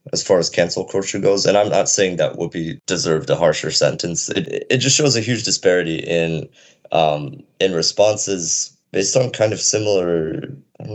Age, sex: 20-39, male